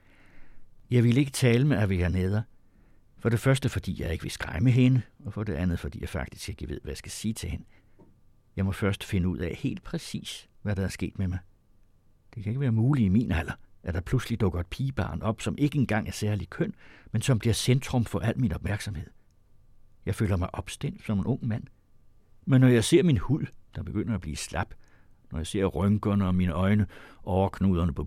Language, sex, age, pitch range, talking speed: Danish, male, 60-79, 95-115 Hz, 220 wpm